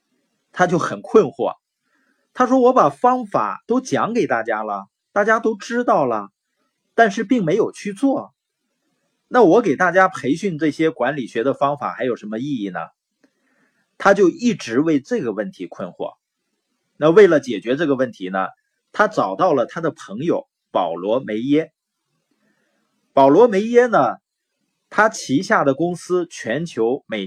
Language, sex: Chinese, male